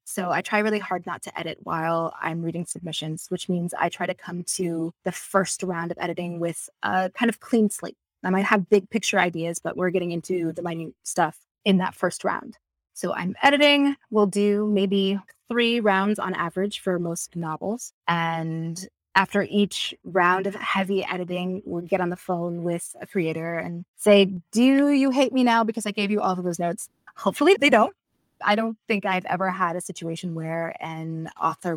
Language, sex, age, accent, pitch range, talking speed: English, female, 20-39, American, 170-205 Hz, 195 wpm